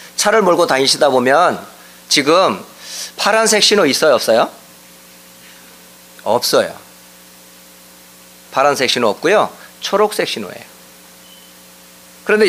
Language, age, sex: English, 40-59, male